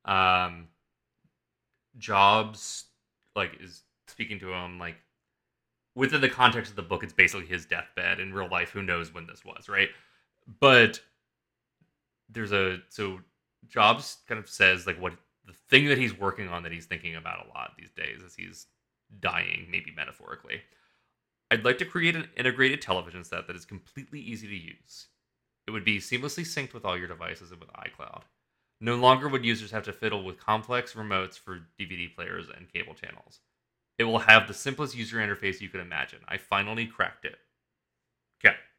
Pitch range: 90-115 Hz